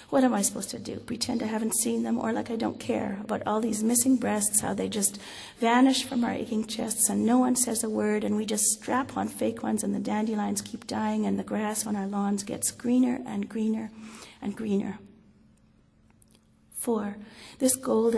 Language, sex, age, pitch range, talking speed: English, female, 40-59, 215-250 Hz, 205 wpm